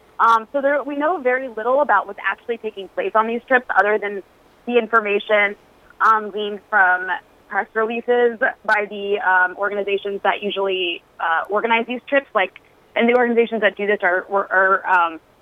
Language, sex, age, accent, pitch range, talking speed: English, female, 20-39, American, 190-230 Hz, 170 wpm